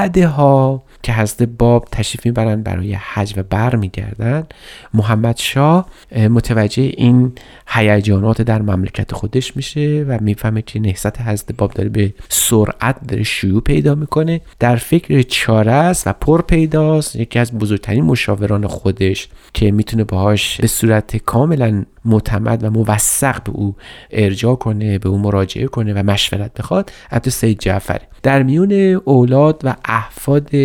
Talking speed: 140 wpm